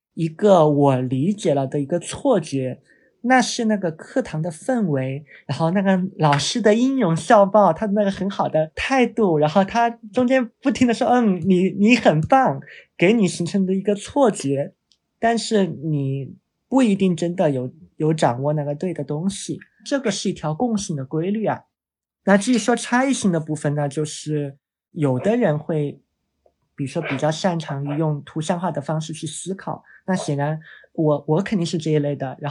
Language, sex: Chinese, male